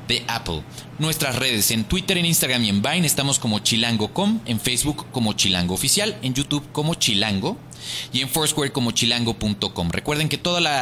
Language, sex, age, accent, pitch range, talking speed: Spanish, male, 30-49, Mexican, 115-155 Hz, 175 wpm